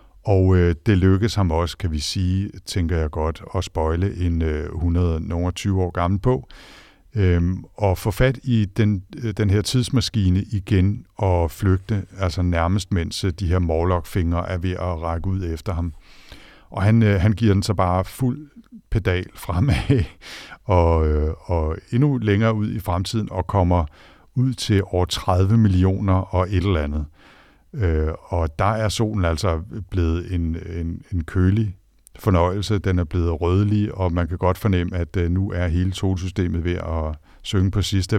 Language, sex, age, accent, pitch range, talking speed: Danish, male, 60-79, native, 85-100 Hz, 155 wpm